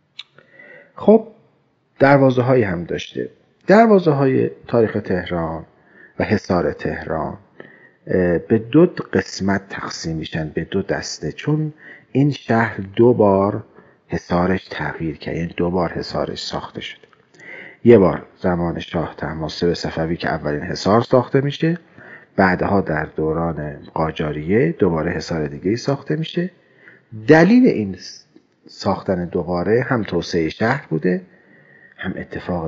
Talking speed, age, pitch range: 115 wpm, 40-59, 85-135 Hz